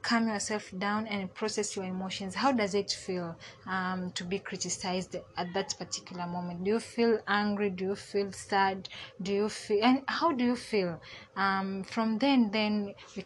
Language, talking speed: English, 180 wpm